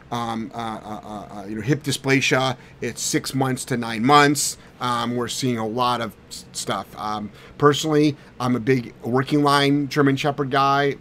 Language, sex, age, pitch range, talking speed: English, male, 30-49, 120-145 Hz, 175 wpm